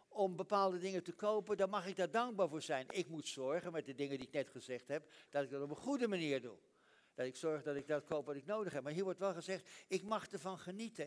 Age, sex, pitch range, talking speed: 60-79, male, 150-205 Hz, 275 wpm